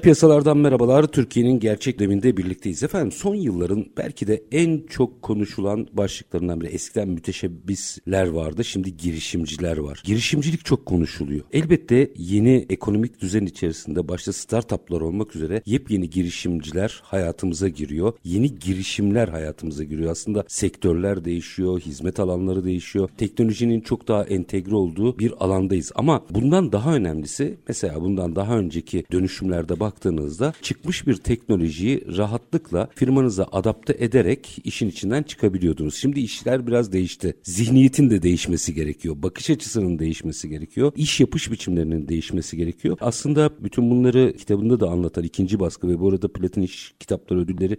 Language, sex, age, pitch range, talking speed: Turkish, male, 50-69, 85-115 Hz, 135 wpm